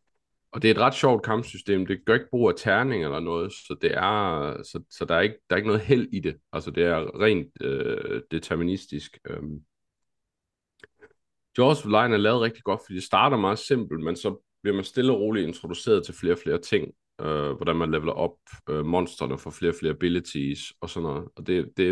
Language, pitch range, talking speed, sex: Danish, 85-110 Hz, 215 wpm, male